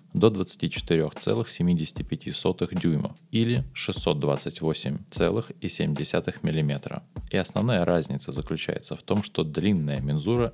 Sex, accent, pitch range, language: male, native, 75-95 Hz, Russian